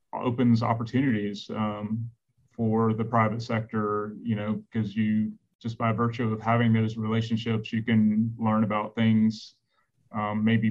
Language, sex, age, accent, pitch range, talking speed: English, male, 30-49, American, 110-120 Hz, 140 wpm